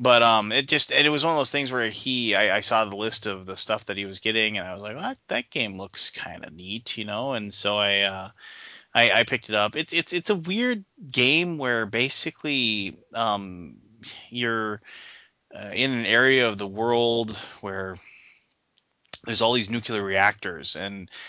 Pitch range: 100-115 Hz